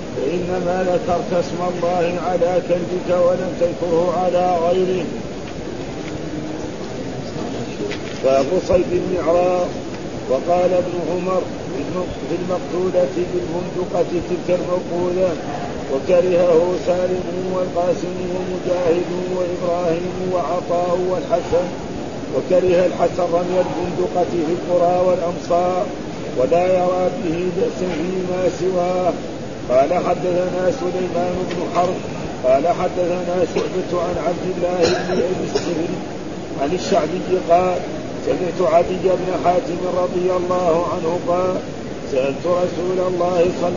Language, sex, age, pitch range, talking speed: Arabic, male, 50-69, 175-180 Hz, 90 wpm